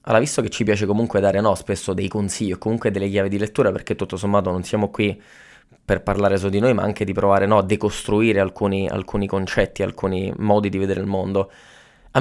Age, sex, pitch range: 20-39, male, 100-125 Hz